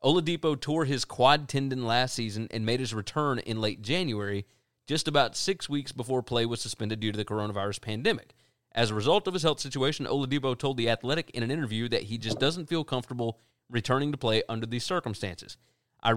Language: English